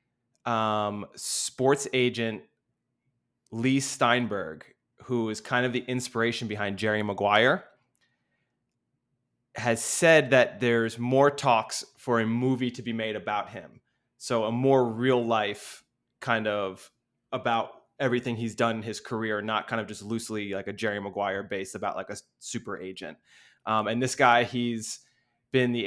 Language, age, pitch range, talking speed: English, 20-39, 110-130 Hz, 150 wpm